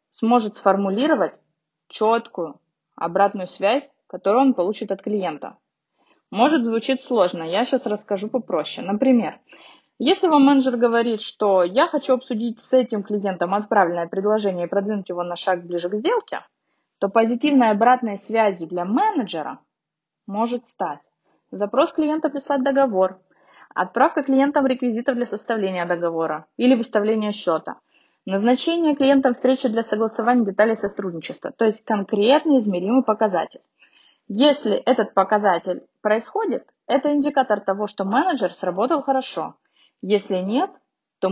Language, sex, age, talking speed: Russian, female, 20-39, 125 wpm